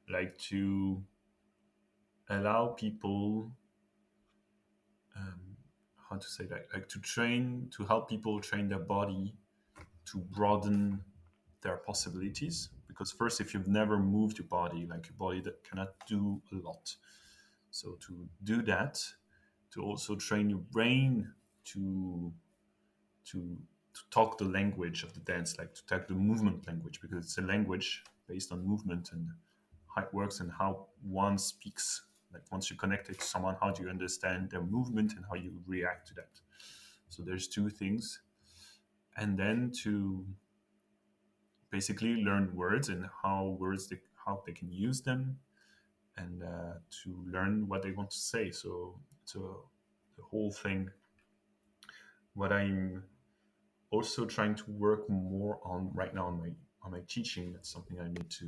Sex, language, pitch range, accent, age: male, Chinese, 90-105 Hz, French, 20-39